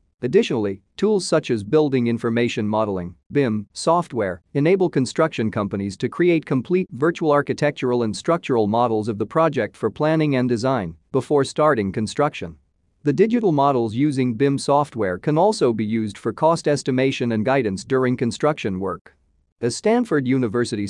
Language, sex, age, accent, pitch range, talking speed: English, male, 40-59, American, 105-150 Hz, 145 wpm